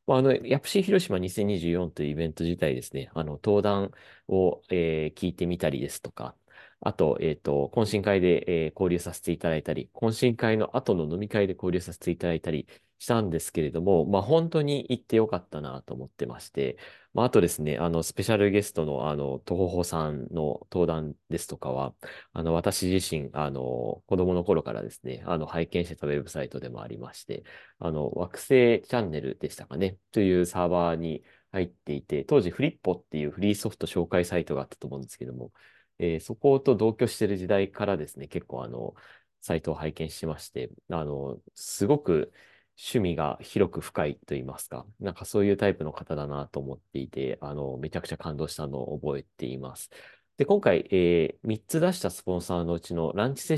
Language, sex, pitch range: Japanese, male, 75-100 Hz